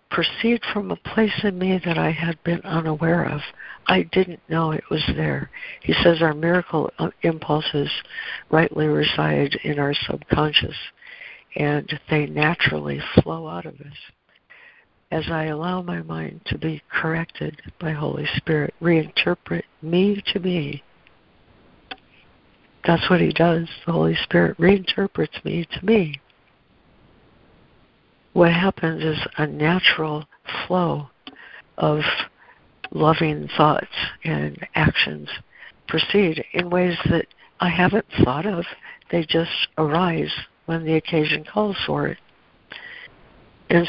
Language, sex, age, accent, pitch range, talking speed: English, female, 60-79, American, 150-175 Hz, 125 wpm